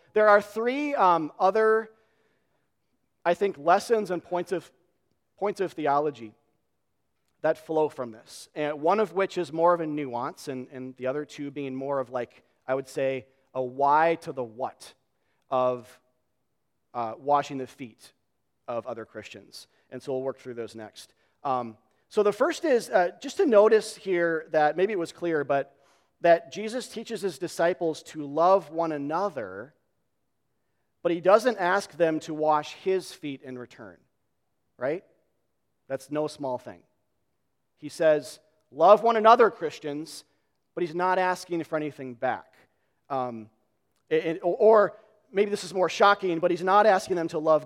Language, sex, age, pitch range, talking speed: English, male, 40-59, 135-185 Hz, 160 wpm